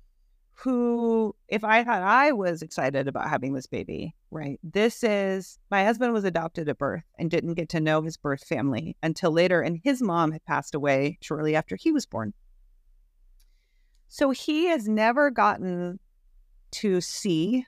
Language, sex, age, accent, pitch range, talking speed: English, female, 40-59, American, 130-215 Hz, 165 wpm